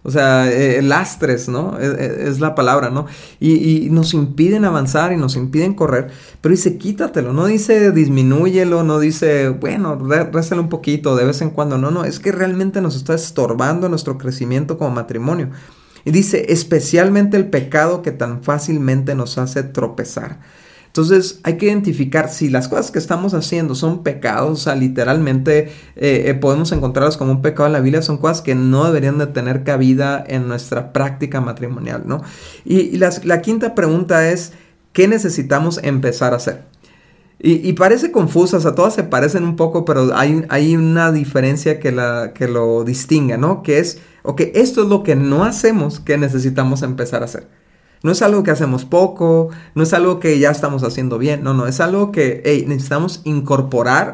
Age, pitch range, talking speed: 40-59, 135-175 Hz, 180 wpm